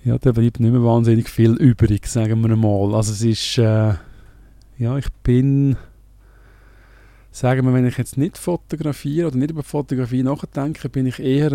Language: German